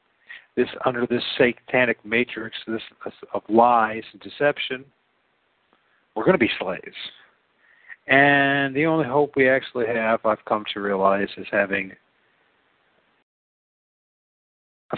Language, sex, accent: English, male, American